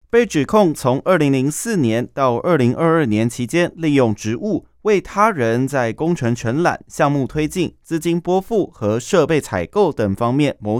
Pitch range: 120-180 Hz